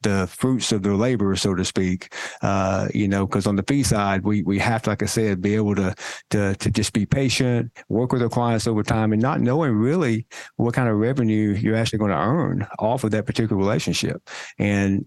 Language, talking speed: English, 225 wpm